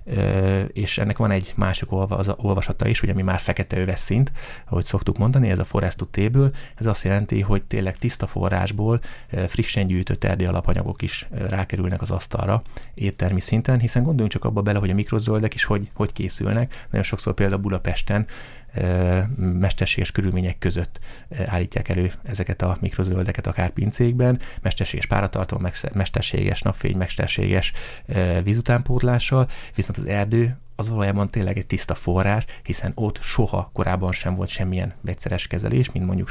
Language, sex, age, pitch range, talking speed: Hungarian, male, 30-49, 95-115 Hz, 145 wpm